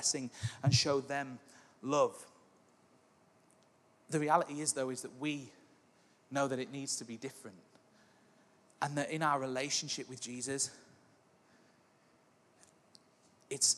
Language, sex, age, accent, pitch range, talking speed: English, male, 30-49, British, 135-160 Hz, 115 wpm